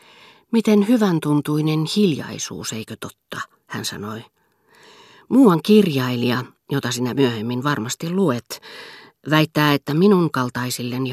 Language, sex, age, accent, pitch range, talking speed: Finnish, female, 40-59, native, 130-165 Hz, 100 wpm